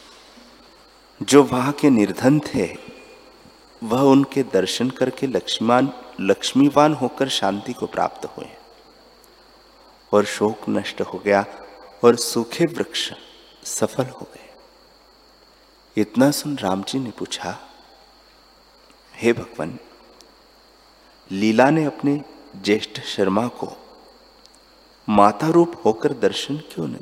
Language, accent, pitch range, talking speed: Hindi, native, 110-145 Hz, 105 wpm